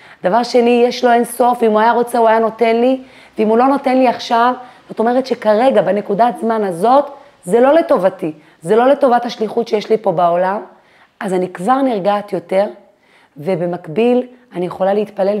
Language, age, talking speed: Hebrew, 30-49, 180 wpm